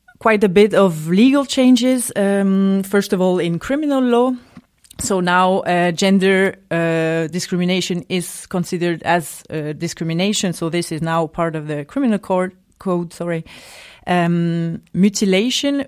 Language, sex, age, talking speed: English, female, 30-49, 140 wpm